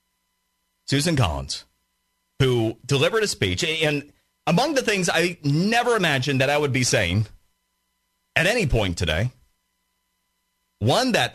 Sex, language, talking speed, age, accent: male, English, 125 wpm, 30-49, American